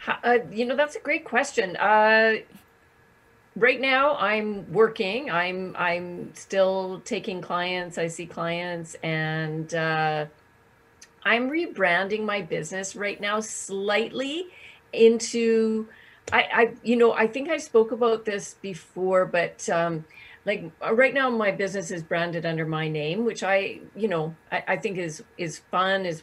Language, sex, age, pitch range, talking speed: English, female, 40-59, 175-225 Hz, 145 wpm